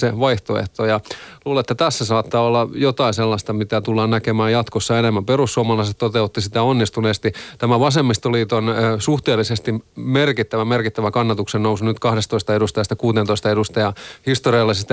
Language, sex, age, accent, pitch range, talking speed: Finnish, male, 30-49, native, 105-120 Hz, 125 wpm